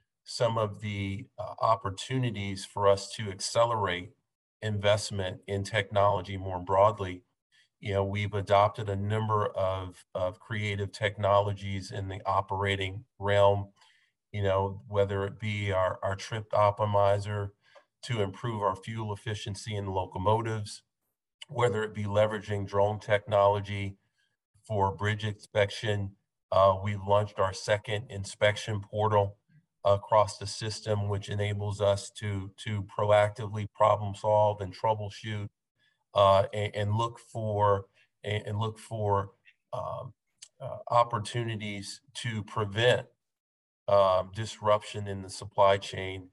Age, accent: 40-59, American